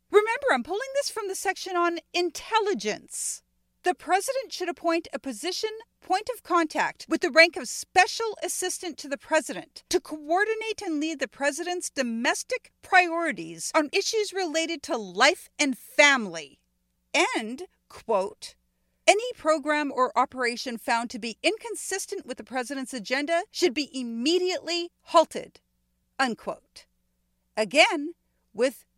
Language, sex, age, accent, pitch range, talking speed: English, female, 50-69, American, 210-345 Hz, 130 wpm